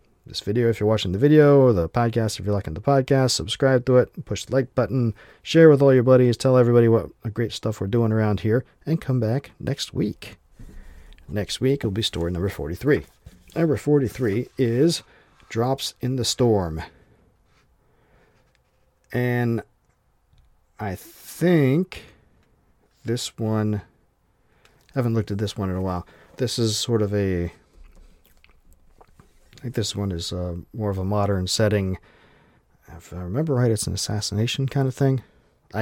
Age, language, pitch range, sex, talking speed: 40-59, English, 95-125 Hz, male, 160 wpm